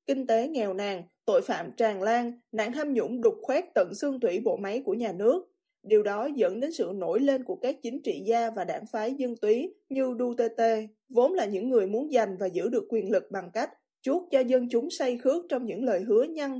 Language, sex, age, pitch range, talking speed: Vietnamese, female, 20-39, 225-285 Hz, 230 wpm